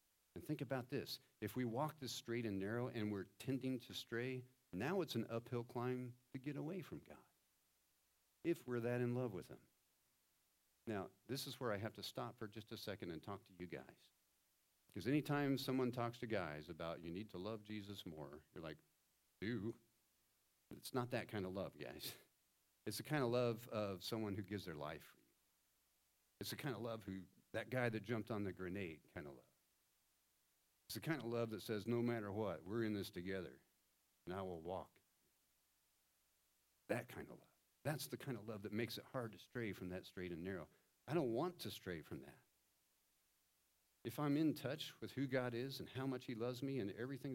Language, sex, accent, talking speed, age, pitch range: English, male, American, 205 wpm, 50-69, 95-125 Hz